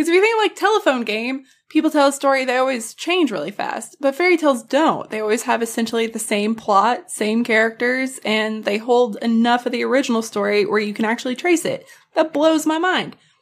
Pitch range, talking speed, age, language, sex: 215-305 Hz, 210 wpm, 20-39, English, female